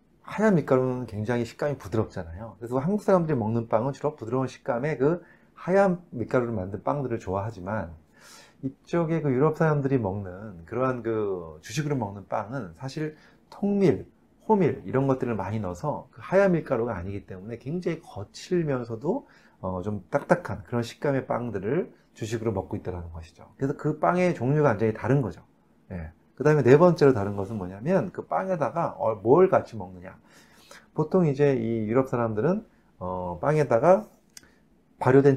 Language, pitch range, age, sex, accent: Korean, 105-150 Hz, 30-49, male, native